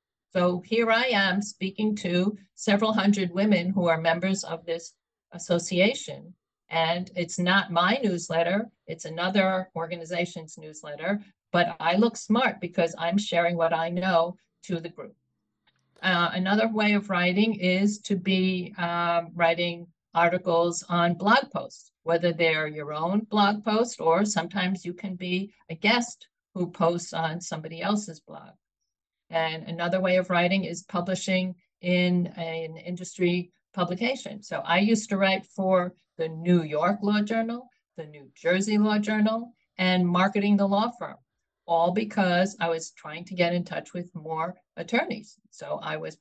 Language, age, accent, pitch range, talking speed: English, 50-69, American, 170-205 Hz, 150 wpm